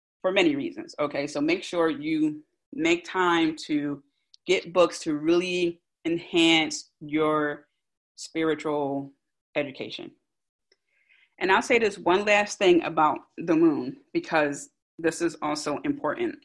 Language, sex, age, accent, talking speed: English, female, 30-49, American, 120 wpm